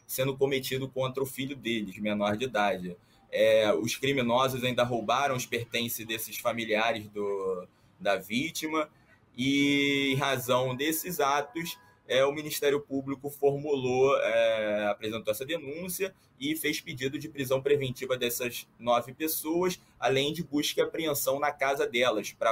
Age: 20-39